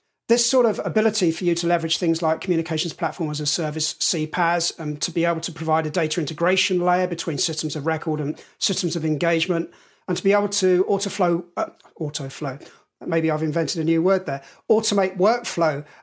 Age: 40-59